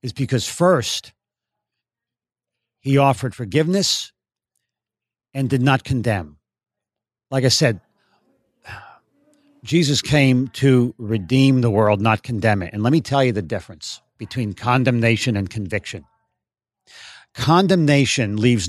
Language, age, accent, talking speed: English, 50-69, American, 110 wpm